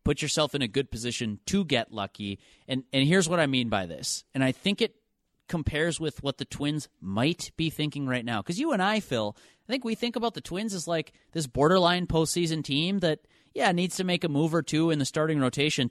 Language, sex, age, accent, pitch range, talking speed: English, male, 30-49, American, 110-160 Hz, 235 wpm